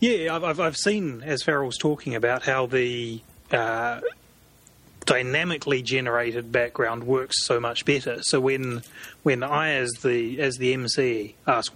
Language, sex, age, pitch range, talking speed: English, male, 30-49, 120-145 Hz, 150 wpm